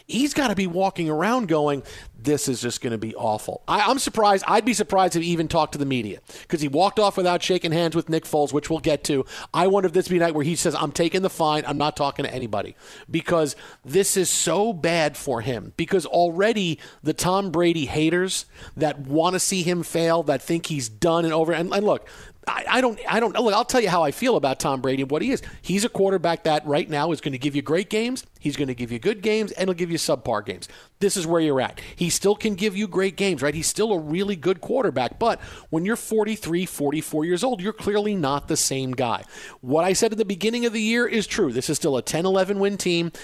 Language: English